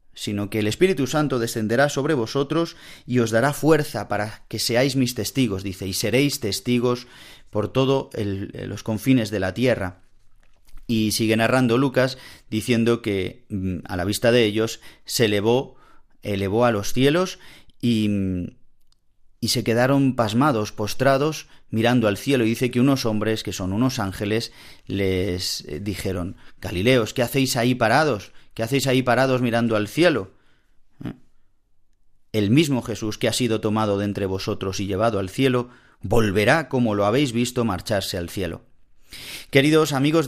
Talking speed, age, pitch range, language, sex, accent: 150 wpm, 30-49, 105-135 Hz, Spanish, male, Spanish